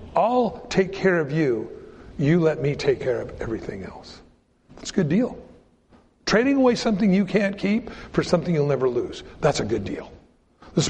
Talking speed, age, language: 180 wpm, 60-79, English